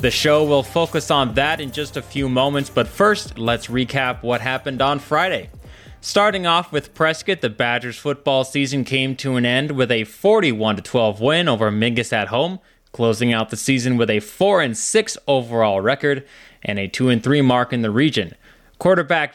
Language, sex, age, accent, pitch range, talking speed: English, male, 20-39, American, 120-150 Hz, 175 wpm